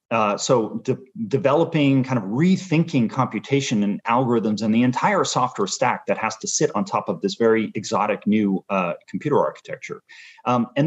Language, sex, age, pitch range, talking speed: English, male, 30-49, 125-185 Hz, 165 wpm